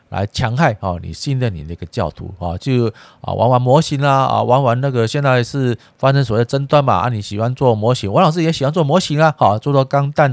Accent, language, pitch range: native, Chinese, 100-130 Hz